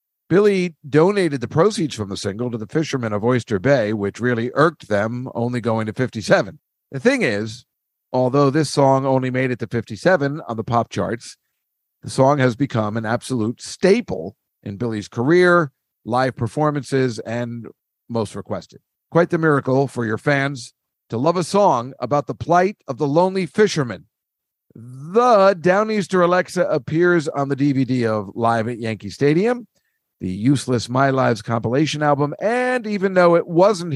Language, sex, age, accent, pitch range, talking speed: English, male, 50-69, American, 115-160 Hz, 160 wpm